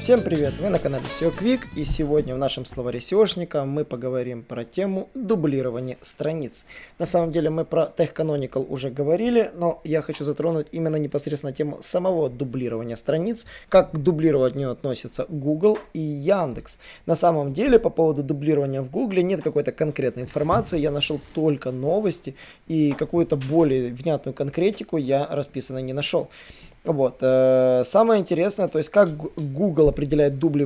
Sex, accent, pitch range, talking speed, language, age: male, native, 140-175 Hz, 155 wpm, Russian, 20-39